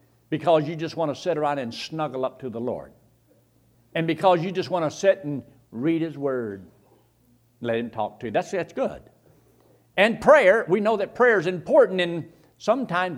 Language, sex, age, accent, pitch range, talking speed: English, male, 60-79, American, 120-175 Hz, 195 wpm